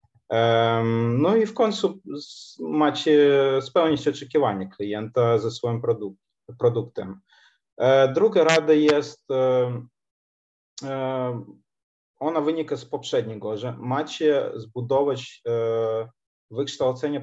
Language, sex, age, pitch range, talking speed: Polish, male, 20-39, 115-140 Hz, 75 wpm